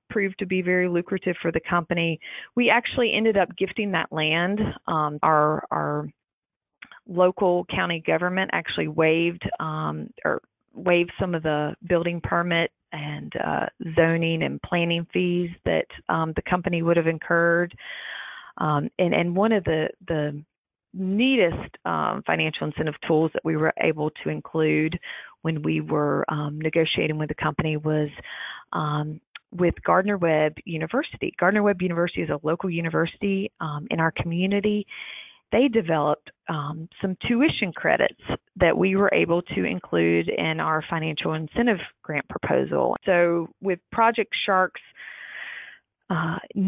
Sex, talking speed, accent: female, 140 wpm, American